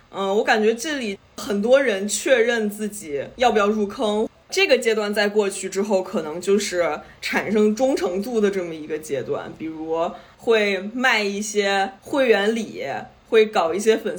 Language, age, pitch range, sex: Chinese, 20-39, 190-230 Hz, female